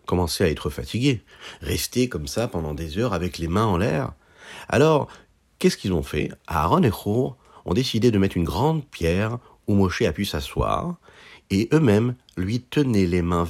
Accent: French